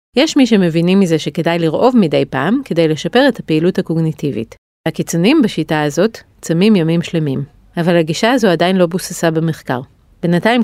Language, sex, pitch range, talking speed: Hebrew, female, 155-205 Hz, 150 wpm